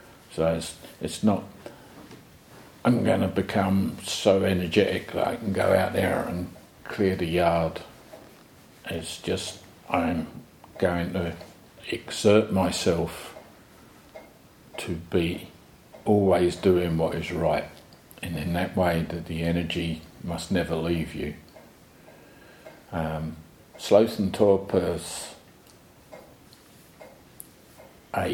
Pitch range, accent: 85-95 Hz, British